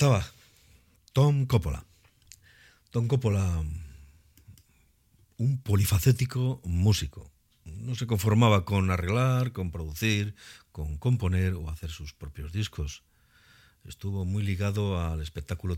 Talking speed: 100 wpm